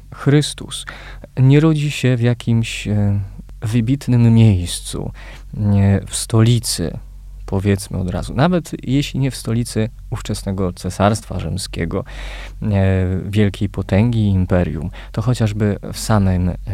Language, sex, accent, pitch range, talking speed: Polish, male, native, 95-125 Hz, 105 wpm